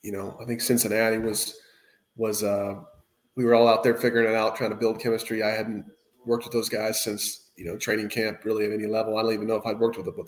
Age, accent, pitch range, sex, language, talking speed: 20-39, American, 105-120 Hz, male, English, 270 wpm